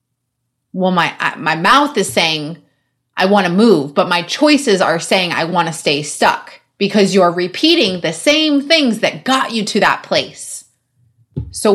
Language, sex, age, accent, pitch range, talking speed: English, female, 30-49, American, 145-225 Hz, 175 wpm